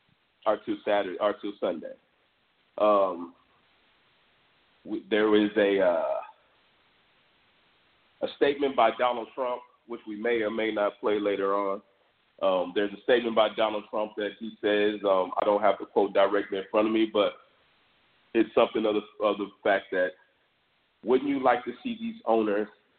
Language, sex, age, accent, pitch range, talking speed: English, male, 40-59, American, 100-120 Hz, 160 wpm